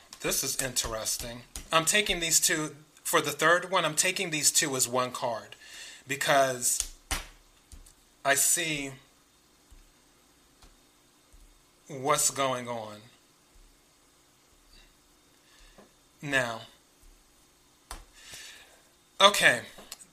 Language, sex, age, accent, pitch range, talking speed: English, male, 30-49, American, 125-155 Hz, 80 wpm